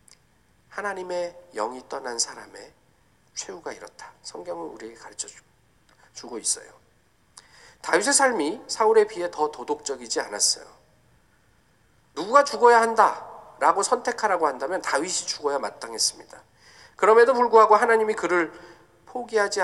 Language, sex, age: Korean, male, 40-59